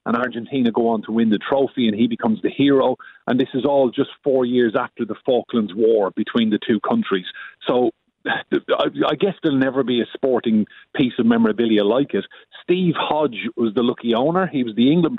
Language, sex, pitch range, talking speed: English, male, 115-140 Hz, 200 wpm